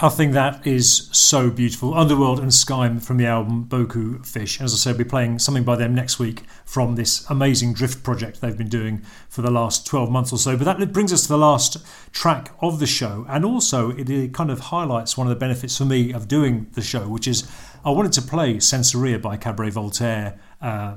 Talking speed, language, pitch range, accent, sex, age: 230 wpm, English, 120-140 Hz, British, male, 40-59